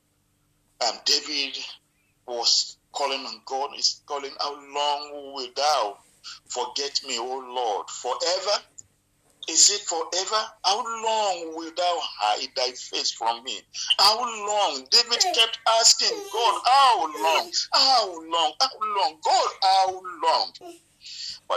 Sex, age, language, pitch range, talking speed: male, 50-69, English, 160-230 Hz, 125 wpm